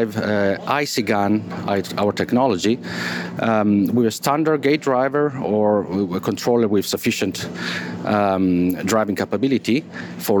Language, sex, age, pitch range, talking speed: English, male, 40-59, 100-125 Hz, 115 wpm